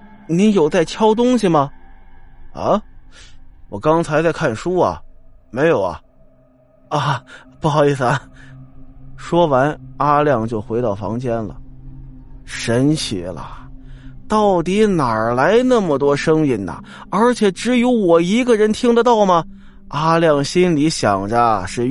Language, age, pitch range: Chinese, 20-39, 115-175 Hz